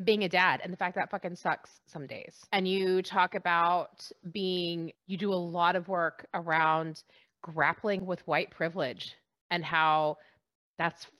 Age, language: 30-49, English